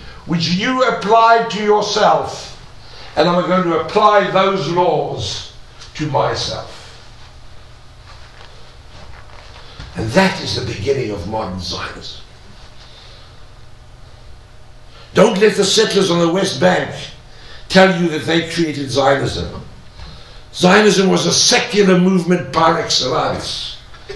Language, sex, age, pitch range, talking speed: English, male, 60-79, 170-215 Hz, 105 wpm